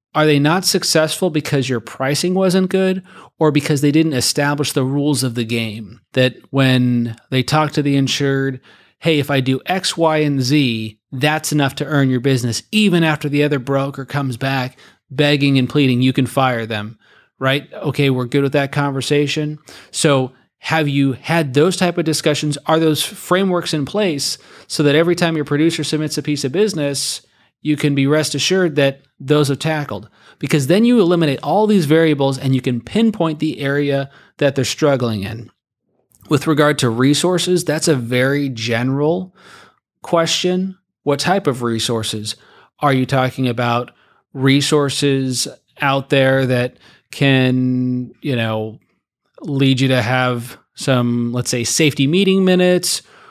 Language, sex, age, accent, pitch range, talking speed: English, male, 30-49, American, 130-155 Hz, 165 wpm